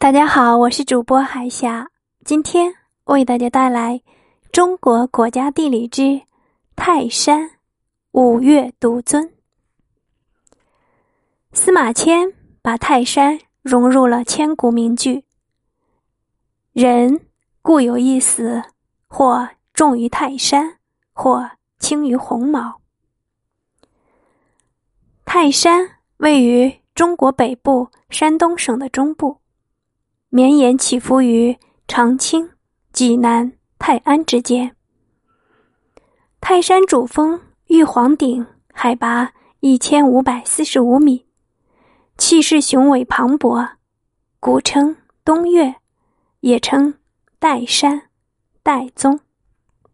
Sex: female